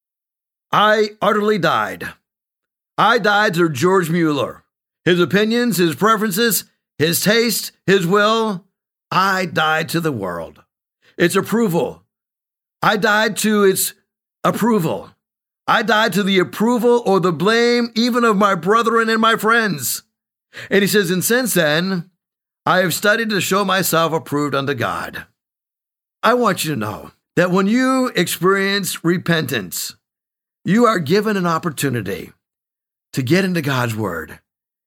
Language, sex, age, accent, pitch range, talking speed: English, male, 50-69, American, 160-215 Hz, 135 wpm